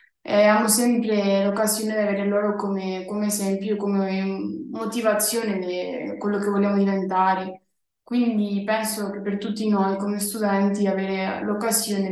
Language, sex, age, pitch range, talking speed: Italian, female, 20-39, 195-215 Hz, 130 wpm